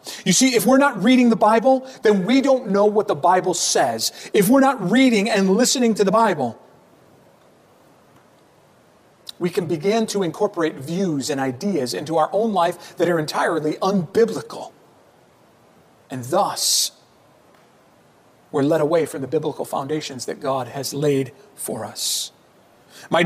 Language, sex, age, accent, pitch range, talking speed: English, male, 40-59, American, 170-240 Hz, 145 wpm